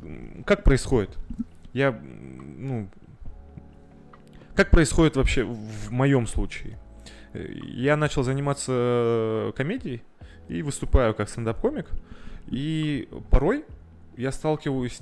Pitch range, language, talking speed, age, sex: 105-140 Hz, Russian, 90 wpm, 20-39, male